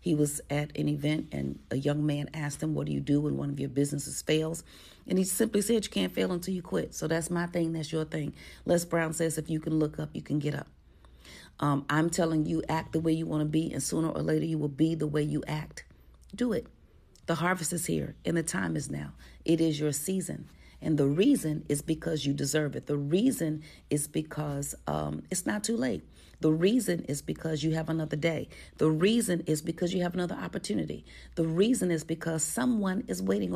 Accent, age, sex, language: American, 40-59, female, English